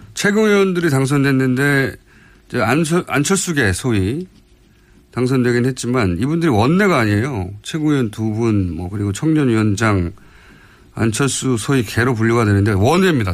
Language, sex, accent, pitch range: Korean, male, native, 100-155 Hz